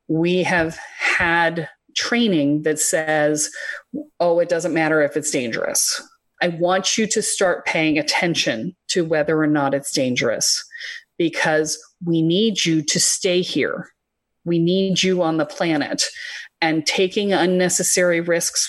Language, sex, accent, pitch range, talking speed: English, female, American, 160-190 Hz, 140 wpm